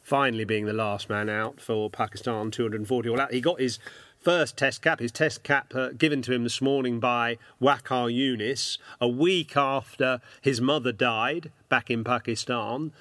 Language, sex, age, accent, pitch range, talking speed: English, male, 40-59, British, 115-140 Hz, 175 wpm